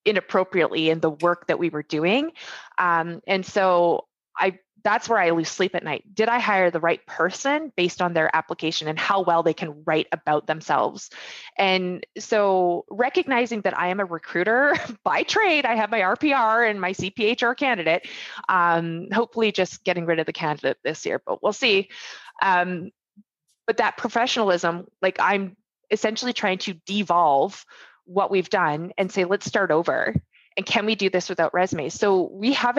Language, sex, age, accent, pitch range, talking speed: English, female, 20-39, American, 175-220 Hz, 175 wpm